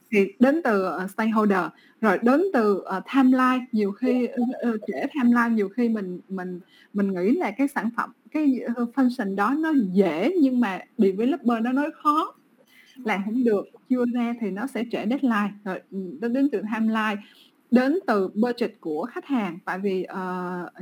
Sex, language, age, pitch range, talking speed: female, Vietnamese, 20-39, 200-270 Hz, 180 wpm